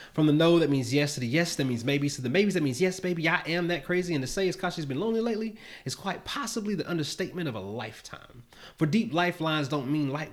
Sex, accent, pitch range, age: male, American, 135-170 Hz, 30-49